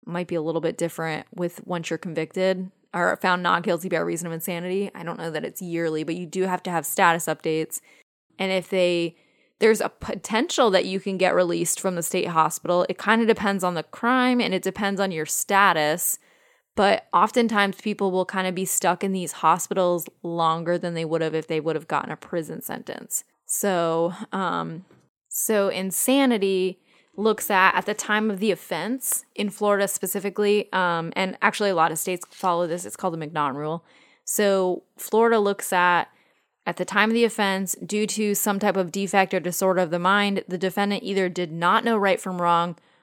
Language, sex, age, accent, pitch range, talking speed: English, female, 10-29, American, 175-205 Hz, 200 wpm